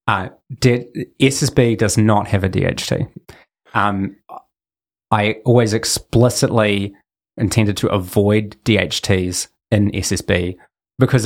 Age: 20-39